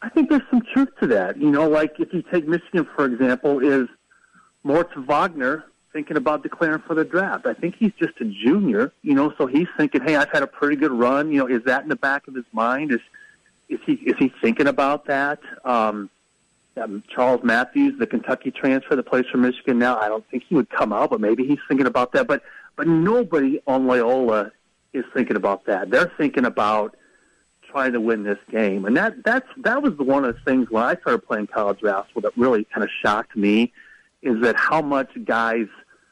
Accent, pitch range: American, 115-180 Hz